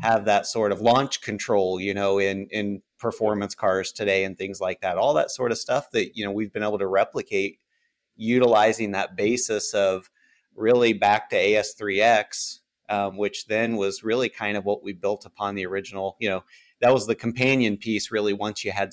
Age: 30-49